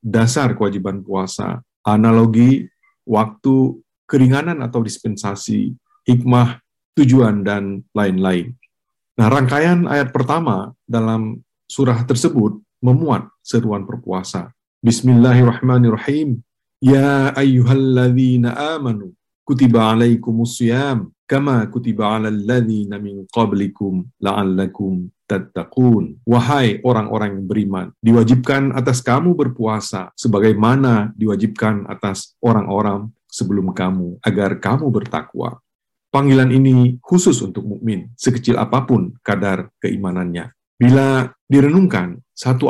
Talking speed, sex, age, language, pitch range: 90 wpm, male, 50-69, Indonesian, 105-130 Hz